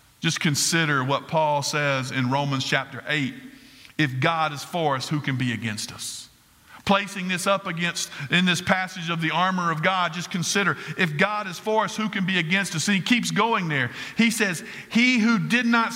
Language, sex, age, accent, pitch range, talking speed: English, male, 50-69, American, 180-245 Hz, 205 wpm